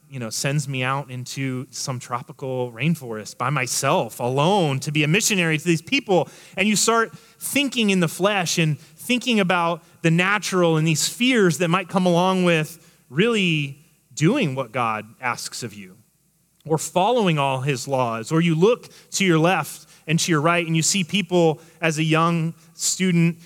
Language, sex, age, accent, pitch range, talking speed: English, male, 30-49, American, 150-180 Hz, 175 wpm